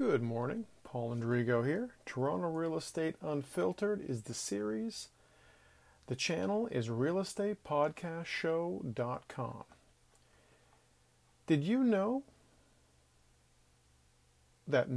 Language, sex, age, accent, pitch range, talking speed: English, male, 40-59, American, 120-165 Hz, 80 wpm